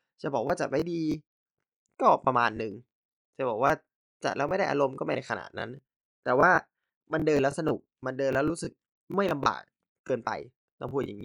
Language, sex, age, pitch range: Thai, male, 20-39, 120-155 Hz